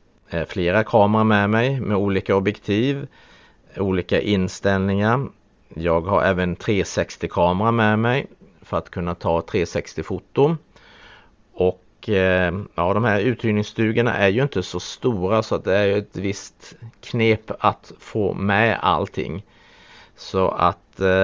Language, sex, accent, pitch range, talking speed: Swedish, male, Norwegian, 90-110 Hz, 120 wpm